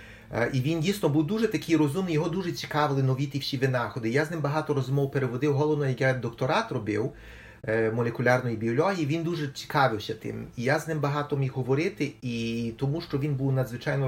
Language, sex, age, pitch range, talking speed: Ukrainian, male, 30-49, 125-150 Hz, 185 wpm